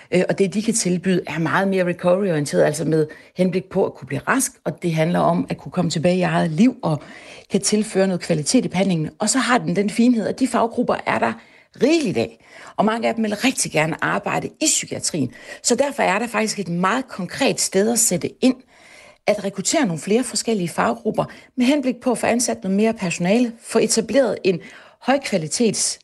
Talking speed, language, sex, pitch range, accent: 205 wpm, Danish, female, 180-230 Hz, native